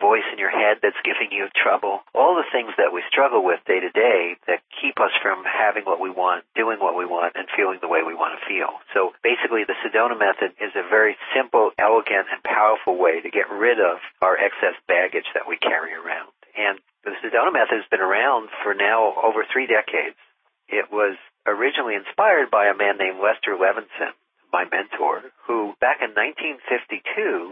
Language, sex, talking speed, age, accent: English, male, 195 wpm, 50-69, American